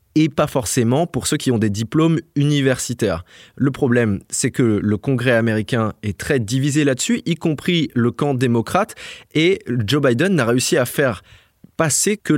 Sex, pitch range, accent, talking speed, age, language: male, 110-145 Hz, French, 165 wpm, 20-39, French